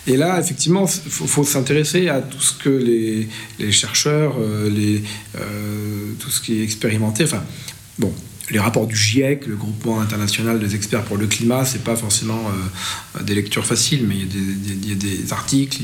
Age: 40-59